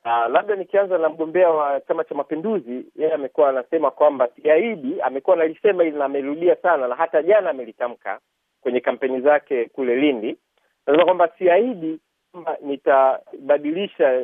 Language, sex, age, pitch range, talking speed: Swahili, male, 50-69, 150-215 Hz, 145 wpm